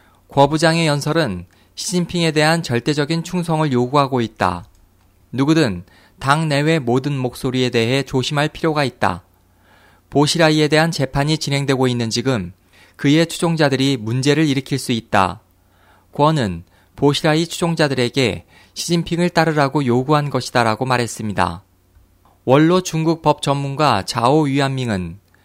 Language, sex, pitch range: Korean, male, 100-150 Hz